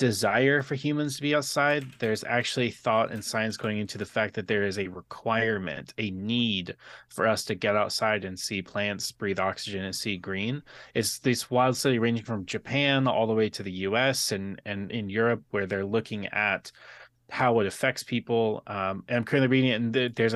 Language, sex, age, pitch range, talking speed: English, male, 30-49, 105-130 Hz, 200 wpm